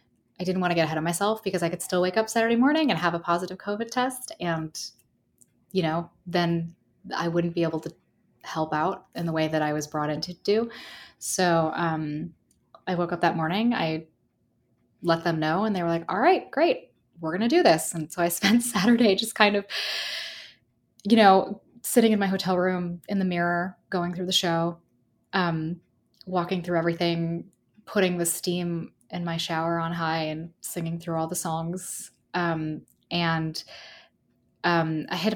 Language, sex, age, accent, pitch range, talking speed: English, female, 20-39, American, 160-195 Hz, 190 wpm